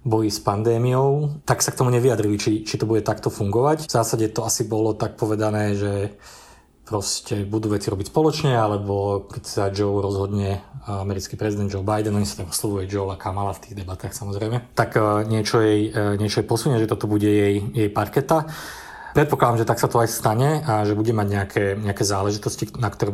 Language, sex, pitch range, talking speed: Slovak, male, 105-120 Hz, 195 wpm